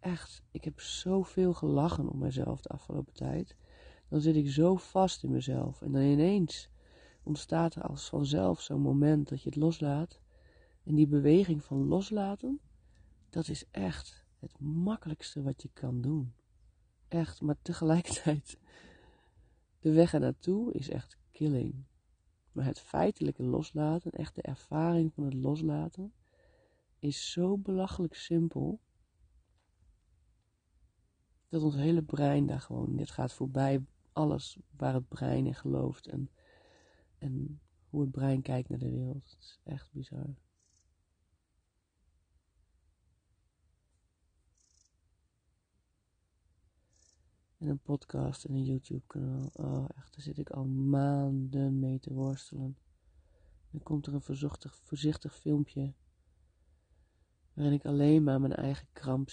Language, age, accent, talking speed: Dutch, 40-59, Dutch, 125 wpm